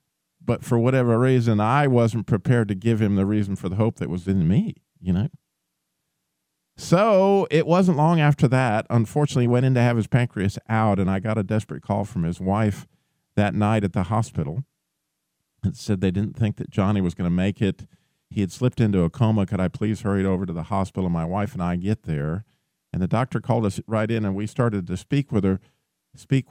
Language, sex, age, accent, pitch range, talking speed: English, male, 50-69, American, 105-140 Hz, 220 wpm